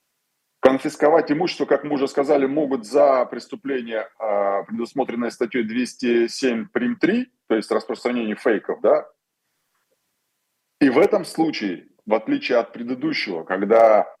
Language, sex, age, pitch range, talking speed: Russian, male, 30-49, 120-185 Hz, 120 wpm